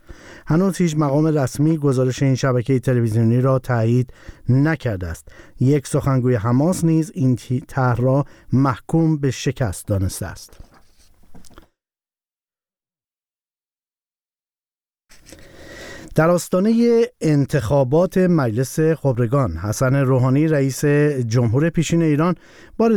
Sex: male